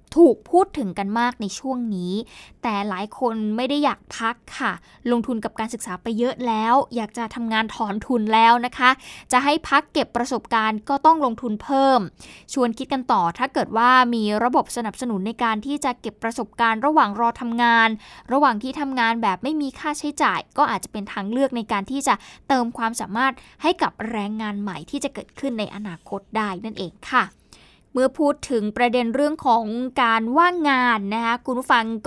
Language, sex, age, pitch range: Thai, female, 10-29, 225-275 Hz